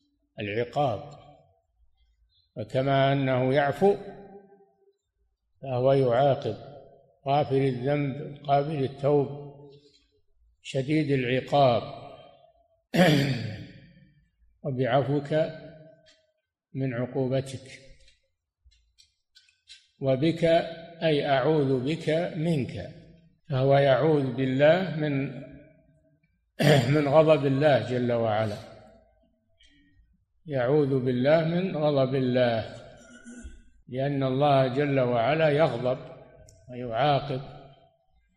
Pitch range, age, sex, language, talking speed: 125-150 Hz, 60-79, male, Arabic, 65 wpm